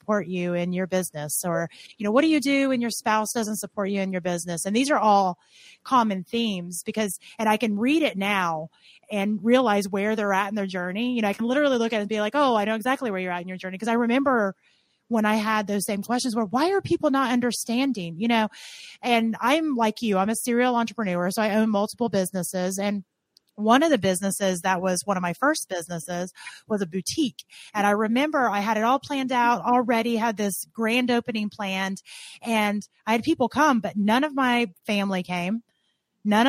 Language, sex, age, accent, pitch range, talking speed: English, female, 30-49, American, 195-245 Hz, 220 wpm